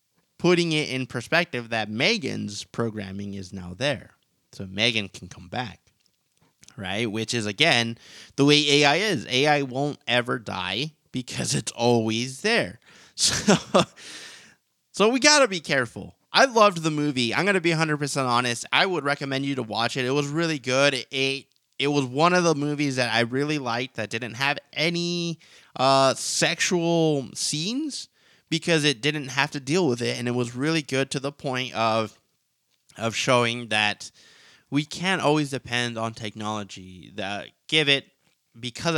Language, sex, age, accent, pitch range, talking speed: English, male, 20-39, American, 110-150 Hz, 165 wpm